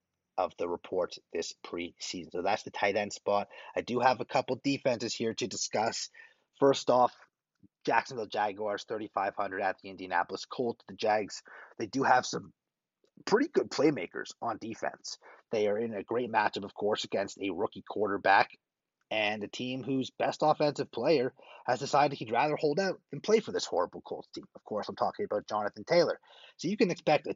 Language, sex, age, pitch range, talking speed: English, male, 30-49, 100-135 Hz, 185 wpm